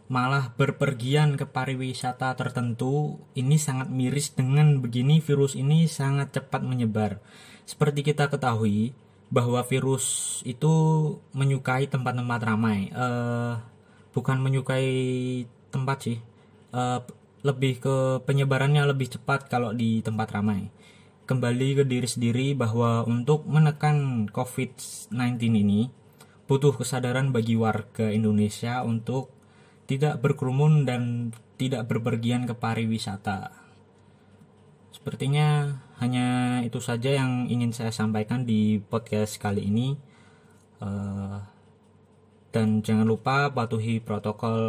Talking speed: 105 wpm